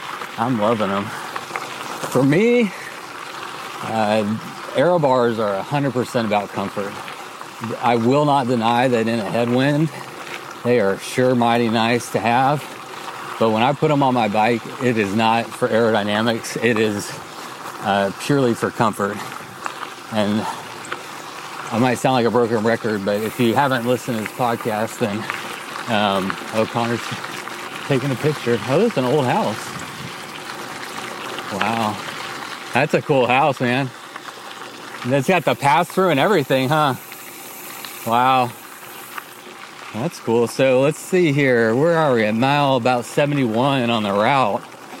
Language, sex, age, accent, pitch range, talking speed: English, male, 40-59, American, 110-140 Hz, 140 wpm